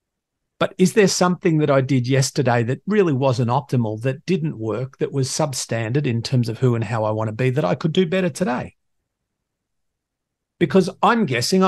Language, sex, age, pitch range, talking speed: English, male, 50-69, 130-165 Hz, 190 wpm